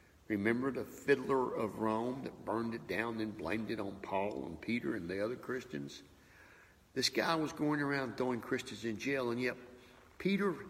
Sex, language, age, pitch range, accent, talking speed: male, English, 60-79, 100-125 Hz, American, 180 wpm